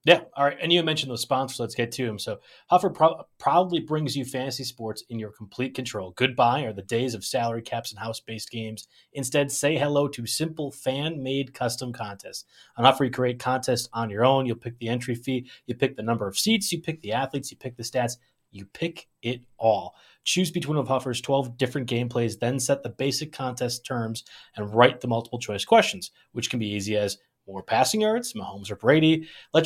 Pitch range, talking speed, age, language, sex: 115-145 Hz, 210 wpm, 30-49, English, male